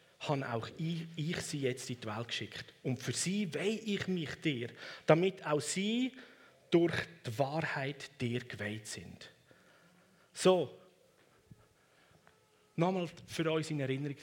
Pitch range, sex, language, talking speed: 120-155 Hz, male, German, 135 wpm